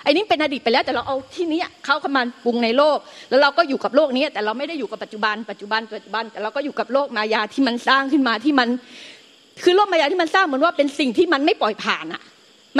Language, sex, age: Thai, female, 30-49